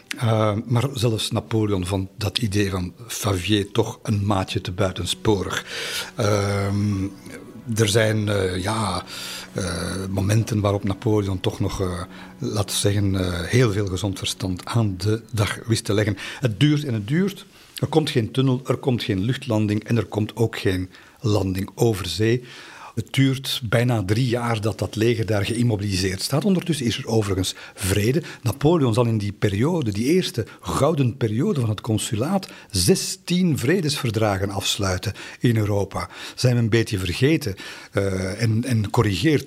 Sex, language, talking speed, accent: male, Dutch, 150 wpm, Belgian